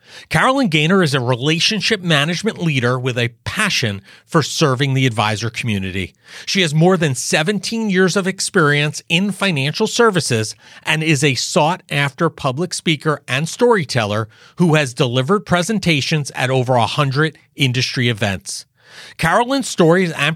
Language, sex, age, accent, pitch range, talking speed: English, male, 40-59, American, 125-185 Hz, 135 wpm